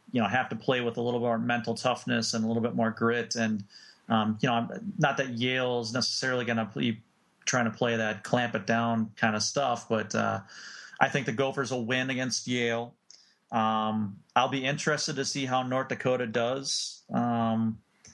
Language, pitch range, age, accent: English, 110-125 Hz, 30-49, American